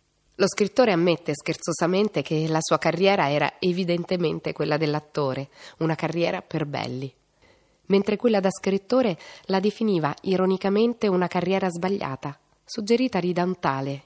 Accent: native